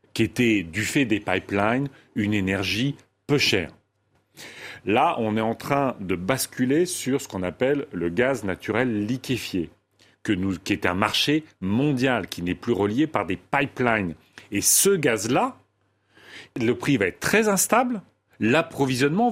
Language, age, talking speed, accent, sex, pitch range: French, 40-59, 145 wpm, French, male, 100-145 Hz